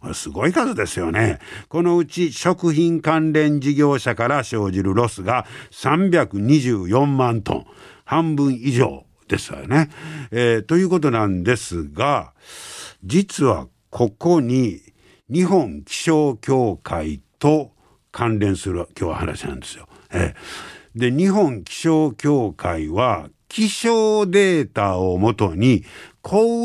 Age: 60-79